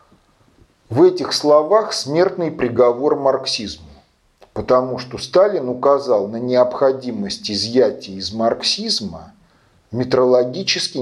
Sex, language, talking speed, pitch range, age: male, Russian, 85 wpm, 110-155 Hz, 40-59